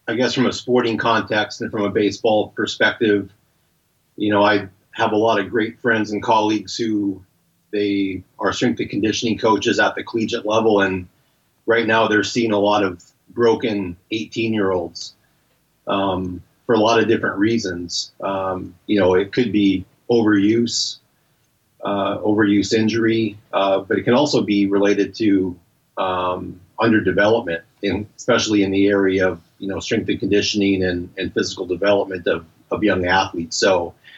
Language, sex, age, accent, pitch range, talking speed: English, male, 30-49, American, 95-110 Hz, 165 wpm